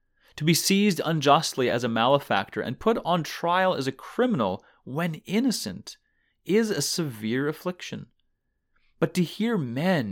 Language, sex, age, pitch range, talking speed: English, male, 30-49, 115-165 Hz, 140 wpm